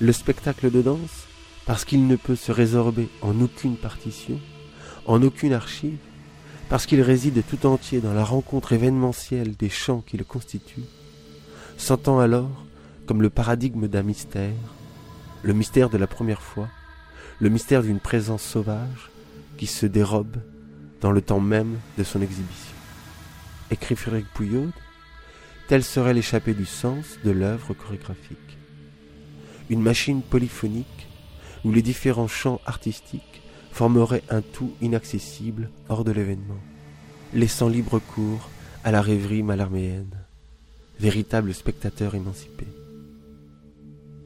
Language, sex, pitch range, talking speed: French, male, 85-120 Hz, 125 wpm